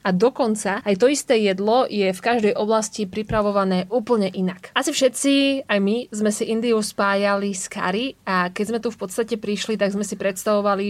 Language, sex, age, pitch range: Slovak, female, 20-39, 190-225 Hz